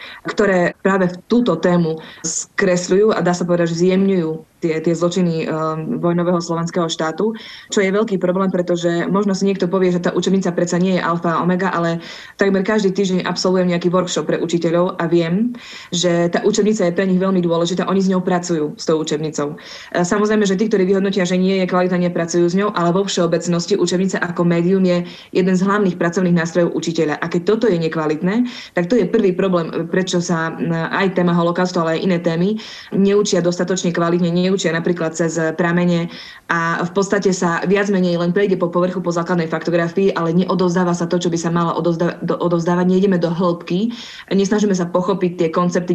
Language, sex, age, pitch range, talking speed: Slovak, female, 20-39, 170-190 Hz, 185 wpm